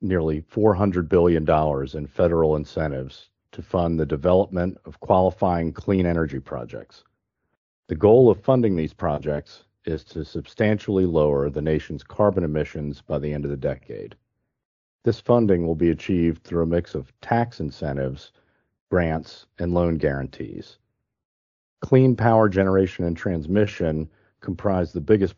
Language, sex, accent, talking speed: English, male, American, 140 wpm